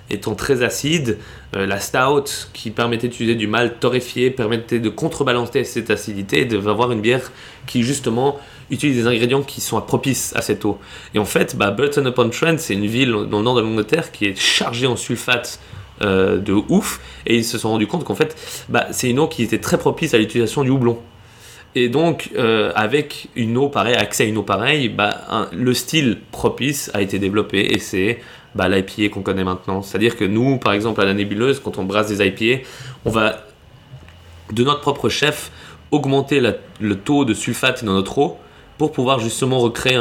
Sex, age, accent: male, 30-49, French